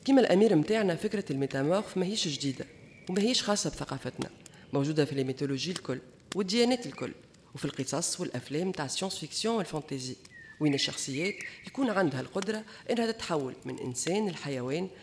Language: French